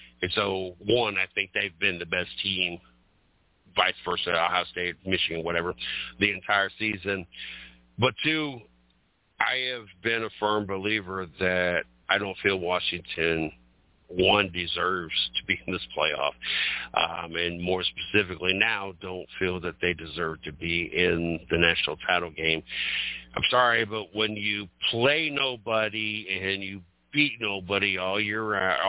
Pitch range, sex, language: 90-110 Hz, male, English